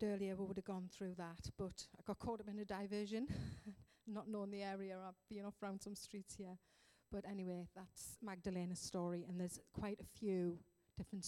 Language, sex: English, female